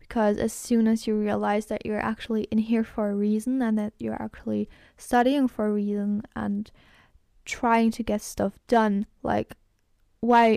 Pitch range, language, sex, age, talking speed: 210-240 Hz, German, female, 10-29, 170 wpm